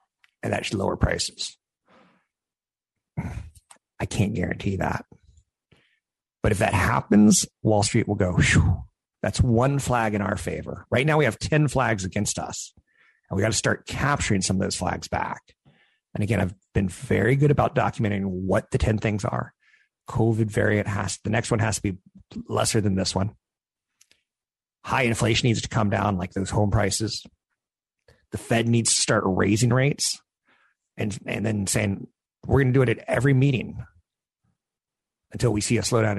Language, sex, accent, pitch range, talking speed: English, male, American, 95-120 Hz, 170 wpm